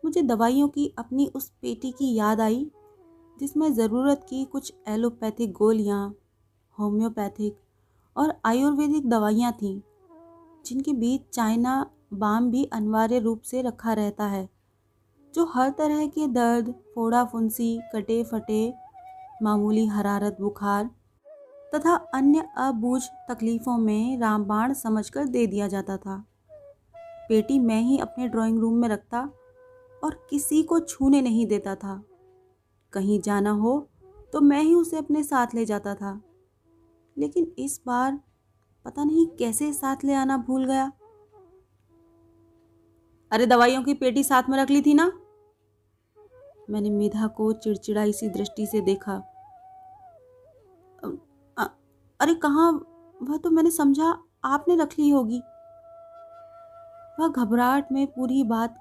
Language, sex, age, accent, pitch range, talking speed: Hindi, female, 30-49, native, 215-305 Hz, 130 wpm